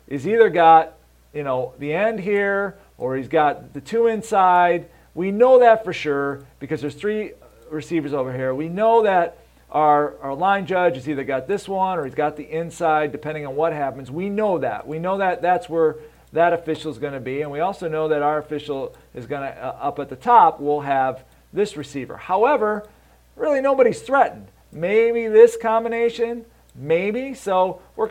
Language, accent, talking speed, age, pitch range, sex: English, American, 190 wpm, 40-59, 145-200 Hz, male